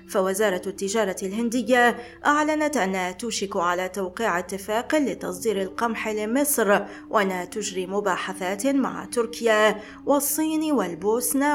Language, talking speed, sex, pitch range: Arabic, 100 wpm, female, 195-250 Hz